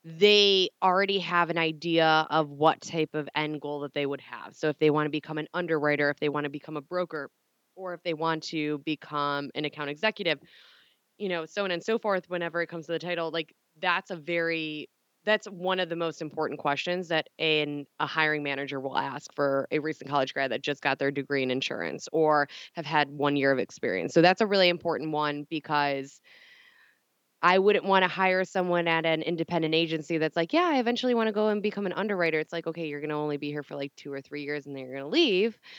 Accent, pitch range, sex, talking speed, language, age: American, 150-185 Hz, female, 235 wpm, English, 20-39